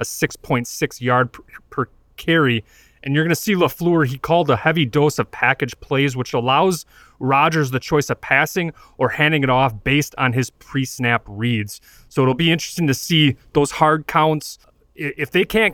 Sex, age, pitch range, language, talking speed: male, 30-49, 120-150 Hz, English, 185 wpm